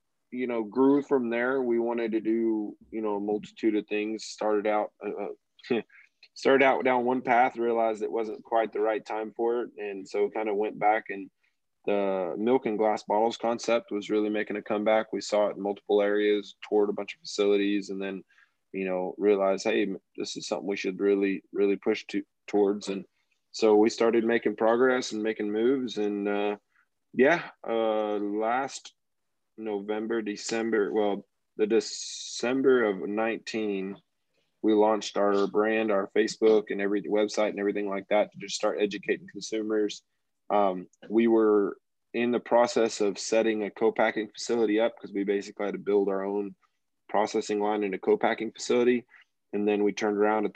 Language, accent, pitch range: English, American, 100-115 Hz